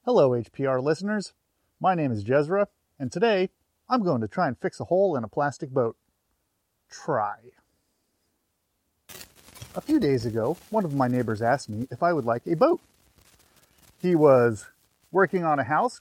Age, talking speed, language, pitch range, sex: 30-49, 165 wpm, English, 135-210 Hz, male